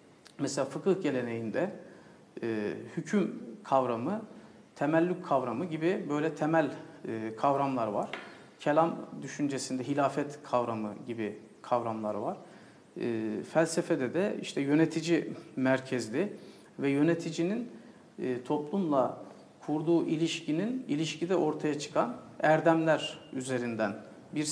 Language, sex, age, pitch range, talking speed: Turkish, male, 50-69, 125-170 Hz, 95 wpm